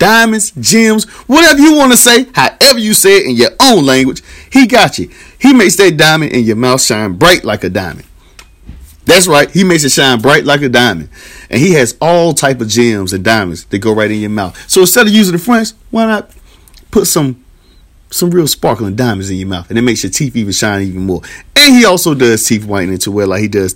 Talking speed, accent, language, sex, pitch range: 230 wpm, American, English, male, 100-165 Hz